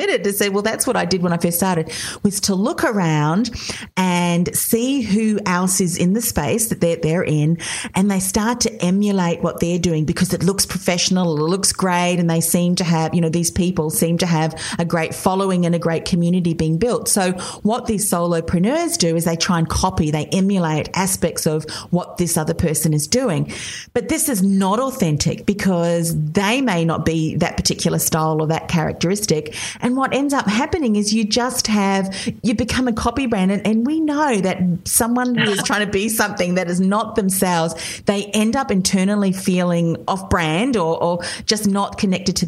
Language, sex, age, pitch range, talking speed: English, female, 40-59, 165-215 Hz, 200 wpm